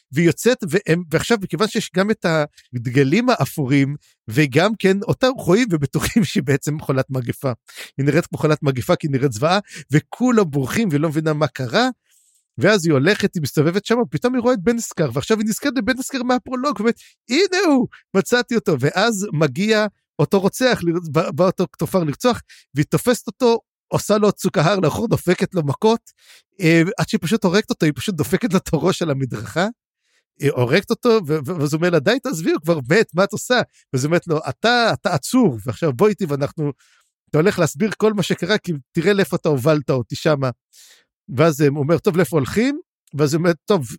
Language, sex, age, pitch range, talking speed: Hebrew, male, 50-69, 150-215 Hz, 175 wpm